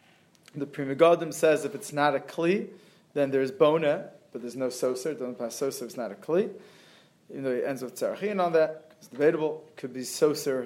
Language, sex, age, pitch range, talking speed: English, male, 30-49, 135-160 Hz, 215 wpm